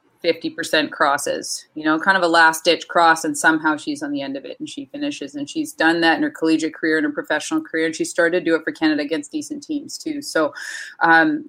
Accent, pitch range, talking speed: American, 155-215 Hz, 245 wpm